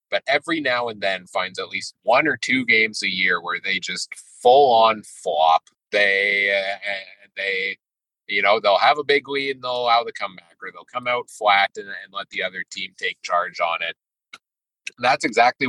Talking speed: 200 wpm